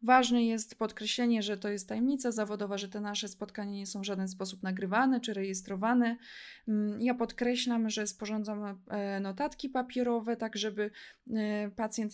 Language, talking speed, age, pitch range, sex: Polish, 145 wpm, 20-39, 205-245 Hz, female